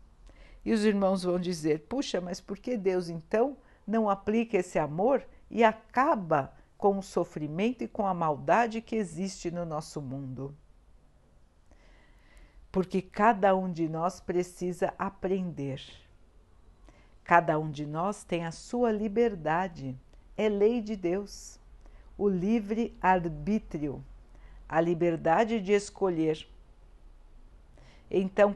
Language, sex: Portuguese, female